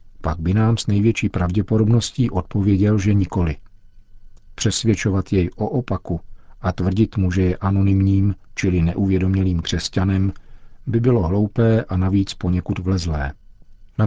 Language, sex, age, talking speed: Czech, male, 50-69, 130 wpm